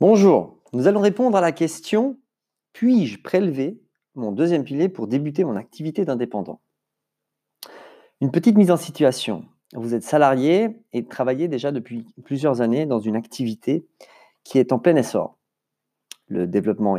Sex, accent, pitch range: male, French, 115-165 Hz